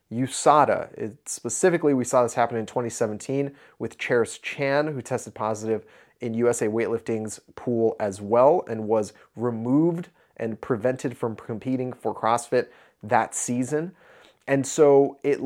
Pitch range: 115-140 Hz